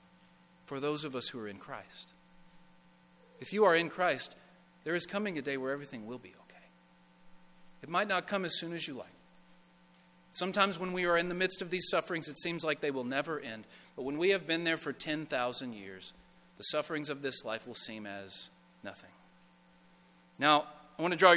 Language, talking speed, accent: English, 200 wpm, American